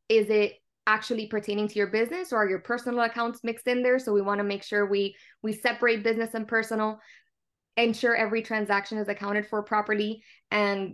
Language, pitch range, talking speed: English, 205-235 Hz, 190 wpm